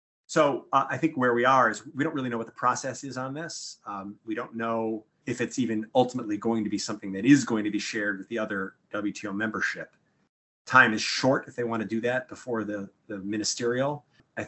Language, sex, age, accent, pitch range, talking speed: English, male, 30-49, American, 100-120 Hz, 230 wpm